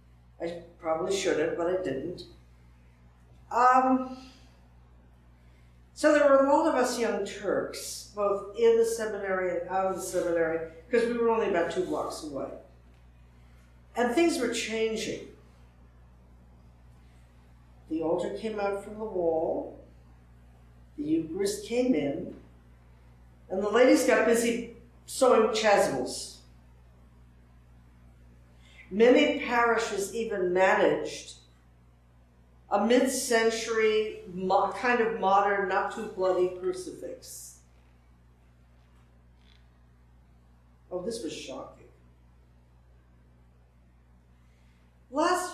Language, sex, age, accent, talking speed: English, female, 60-79, American, 95 wpm